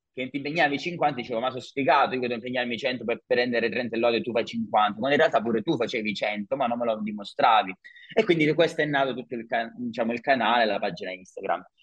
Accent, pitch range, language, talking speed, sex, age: native, 115-145 Hz, Italian, 245 wpm, male, 30-49